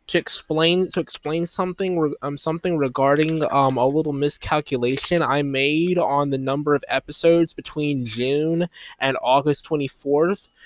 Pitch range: 135-160 Hz